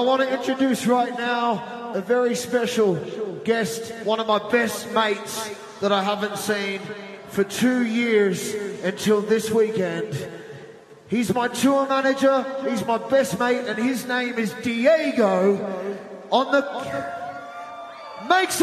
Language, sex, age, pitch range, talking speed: English, male, 30-49, 210-280 Hz, 130 wpm